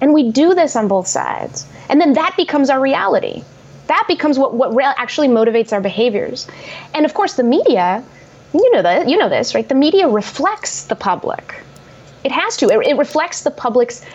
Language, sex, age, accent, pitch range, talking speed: English, female, 20-39, American, 210-290 Hz, 200 wpm